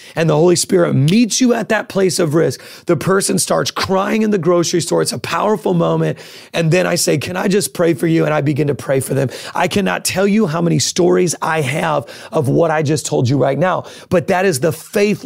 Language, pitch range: English, 150-185 Hz